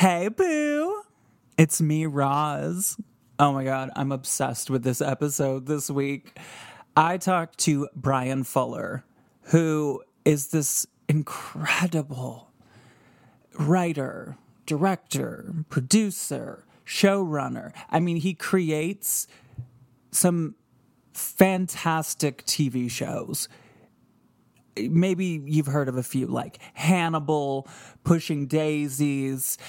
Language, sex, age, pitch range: English, male, 20-39, 135-170 Hz